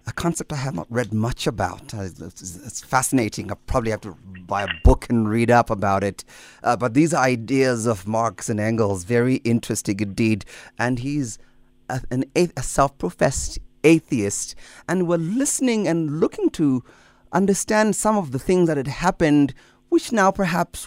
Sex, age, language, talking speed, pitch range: male, 30-49, English, 165 wpm, 115-150 Hz